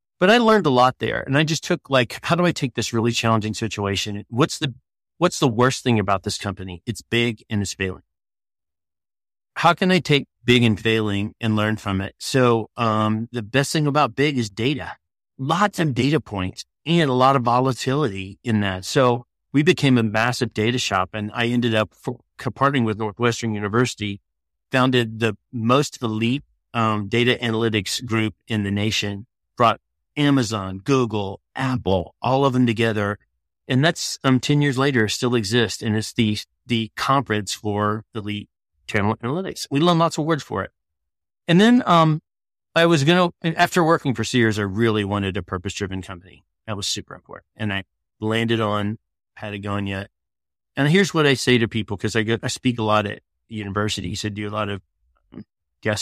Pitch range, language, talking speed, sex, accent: 105-135 Hz, English, 185 wpm, male, American